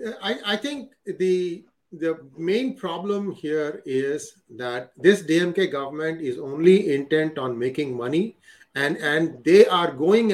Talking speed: 140 wpm